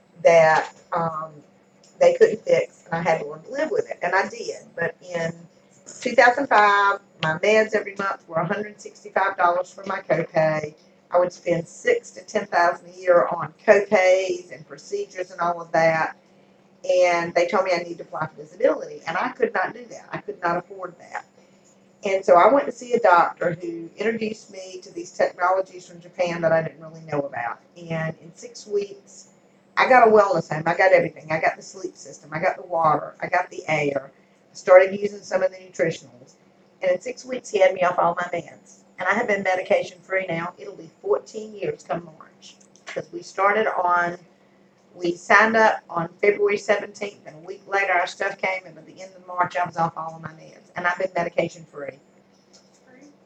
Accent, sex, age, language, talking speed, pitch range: American, female, 40-59, English, 200 wpm, 170-205 Hz